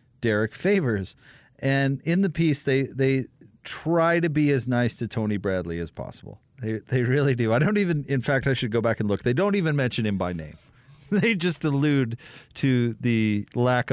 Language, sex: English, male